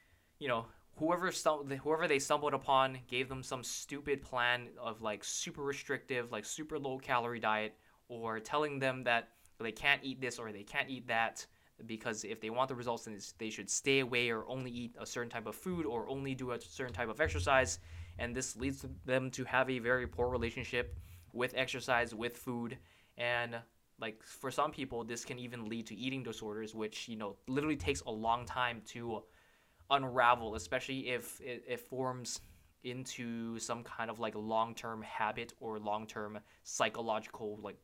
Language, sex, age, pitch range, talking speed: English, male, 20-39, 110-130 Hz, 180 wpm